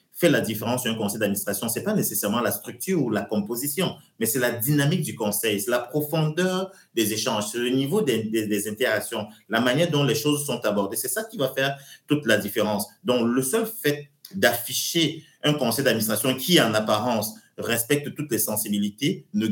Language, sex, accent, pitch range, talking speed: French, male, French, 110-150 Hz, 195 wpm